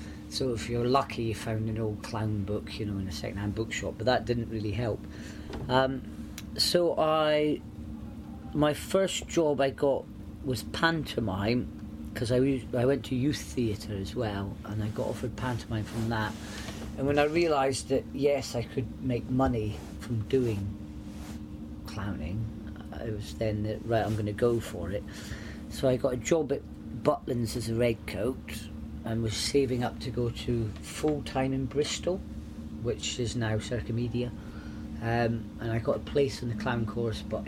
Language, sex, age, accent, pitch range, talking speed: English, female, 40-59, British, 105-125 Hz, 175 wpm